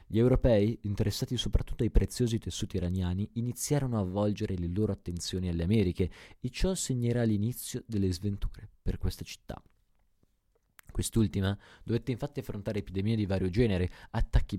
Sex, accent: male, native